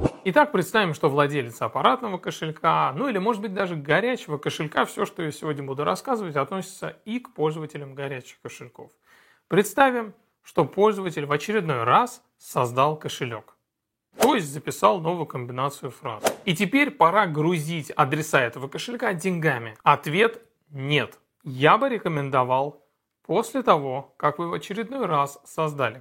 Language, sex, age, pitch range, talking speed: Russian, male, 30-49, 135-180 Hz, 140 wpm